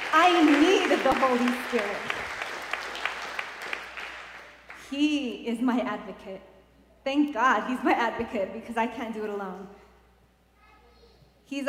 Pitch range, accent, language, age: 205-265 Hz, American, English, 30-49